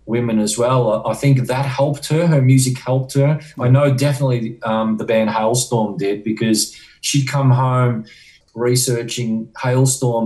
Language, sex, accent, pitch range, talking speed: English, male, Australian, 115-135 Hz, 150 wpm